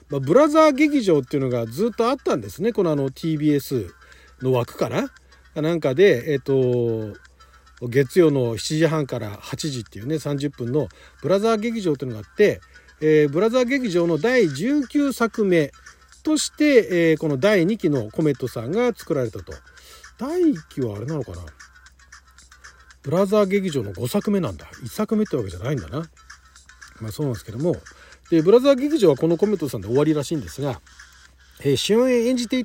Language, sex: Japanese, male